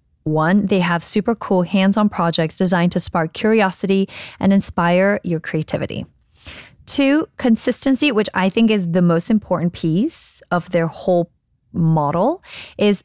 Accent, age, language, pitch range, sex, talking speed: American, 20-39, English, 180-230 Hz, female, 140 wpm